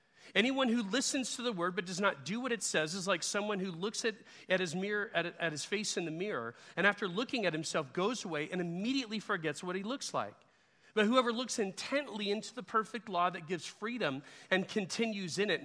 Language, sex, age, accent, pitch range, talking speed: English, male, 40-59, American, 165-225 Hz, 220 wpm